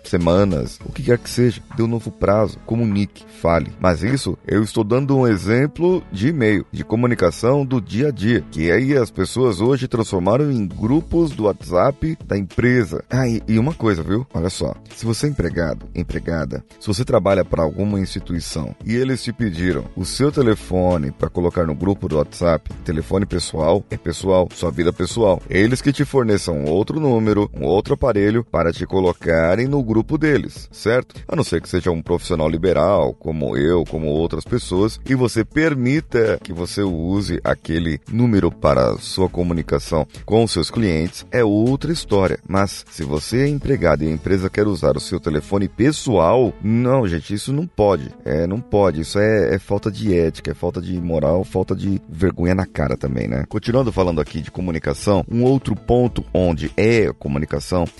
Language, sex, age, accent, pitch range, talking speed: Portuguese, male, 30-49, Brazilian, 85-115 Hz, 180 wpm